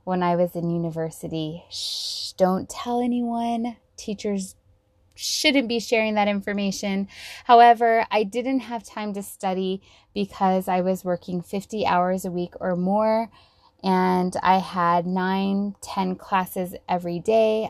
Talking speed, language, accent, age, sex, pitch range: 135 wpm, English, American, 20-39, female, 180-220 Hz